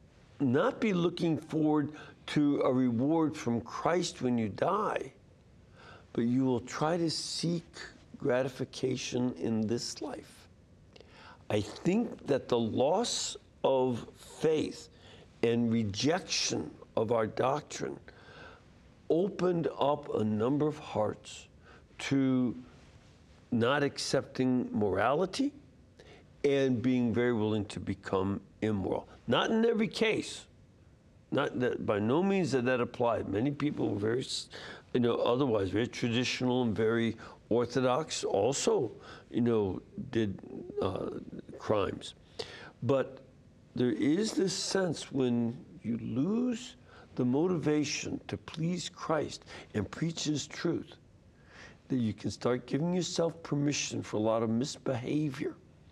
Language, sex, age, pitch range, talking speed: English, male, 60-79, 115-155 Hz, 120 wpm